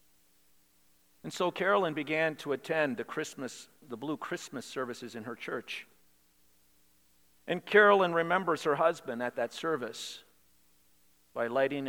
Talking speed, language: 125 wpm, English